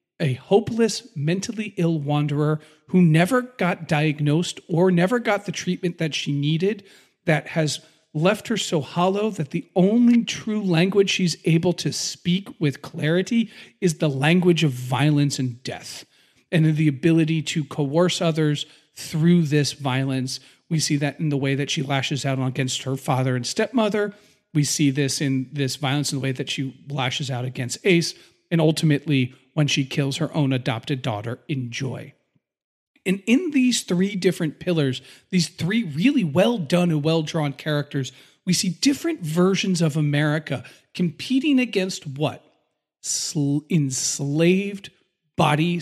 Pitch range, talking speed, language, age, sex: 145-195 Hz, 150 wpm, English, 40-59, male